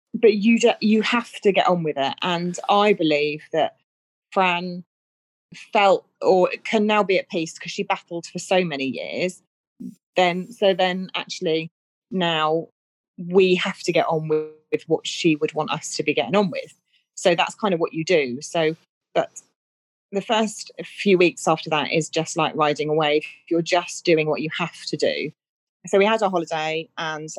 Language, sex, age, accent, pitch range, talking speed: English, female, 30-49, British, 160-195 Hz, 185 wpm